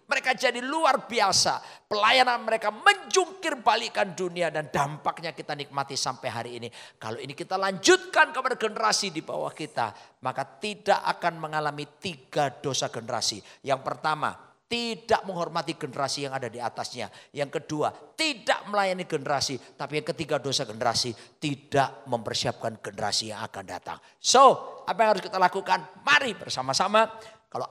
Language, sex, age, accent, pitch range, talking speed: Indonesian, male, 50-69, native, 135-220 Hz, 145 wpm